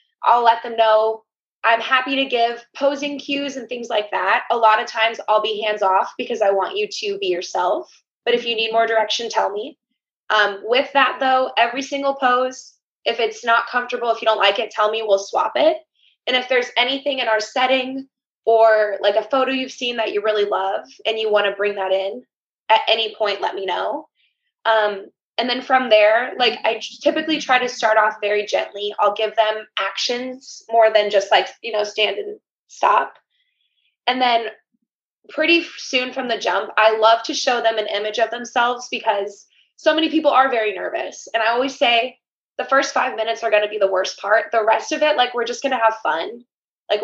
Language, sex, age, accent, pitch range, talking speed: English, female, 20-39, American, 215-260 Hz, 210 wpm